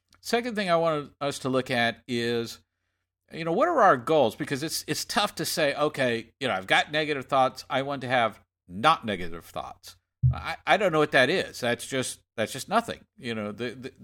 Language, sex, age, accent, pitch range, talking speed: English, male, 50-69, American, 105-140 Hz, 215 wpm